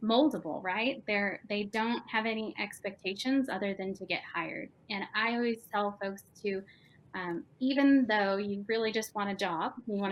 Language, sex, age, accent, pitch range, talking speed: English, female, 10-29, American, 190-225 Hz, 180 wpm